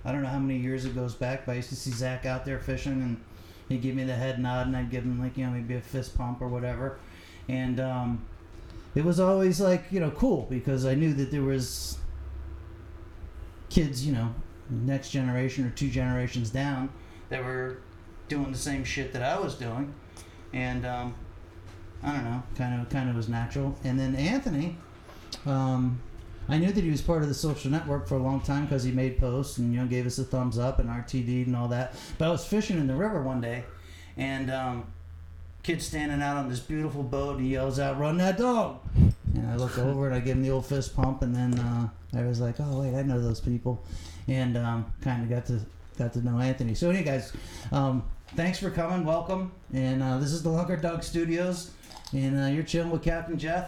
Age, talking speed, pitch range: 30-49, 225 wpm, 120-140 Hz